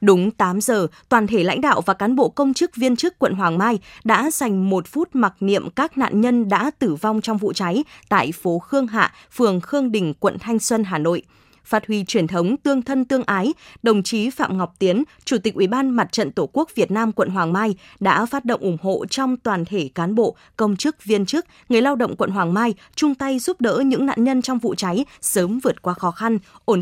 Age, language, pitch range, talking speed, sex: 20-39, Vietnamese, 190-255 Hz, 235 wpm, female